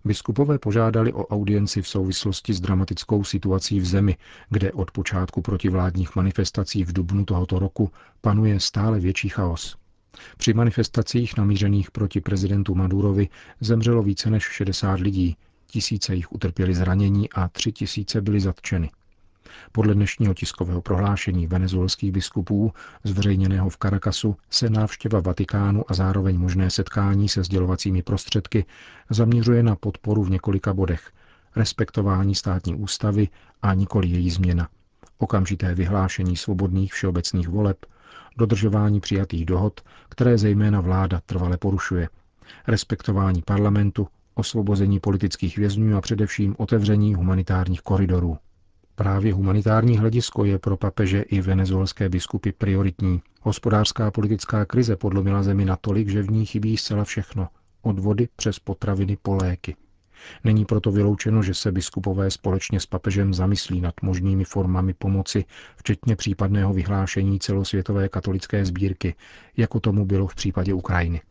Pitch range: 95-105 Hz